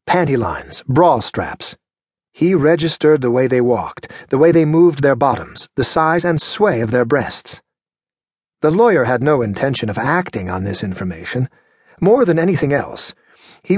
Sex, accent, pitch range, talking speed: male, American, 120-160 Hz, 165 wpm